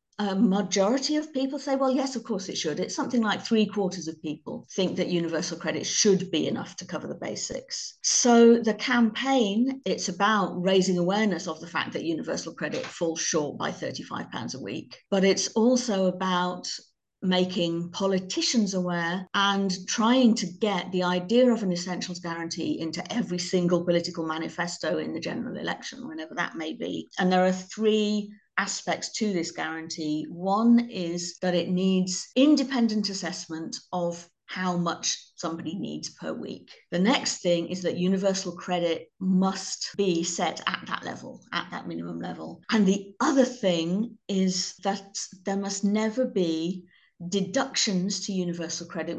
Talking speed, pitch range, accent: 160 wpm, 175-215 Hz, British